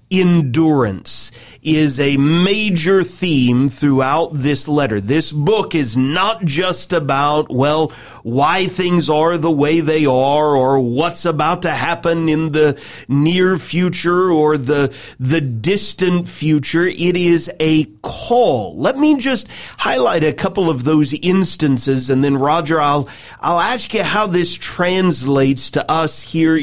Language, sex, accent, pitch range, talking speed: English, male, American, 140-180 Hz, 140 wpm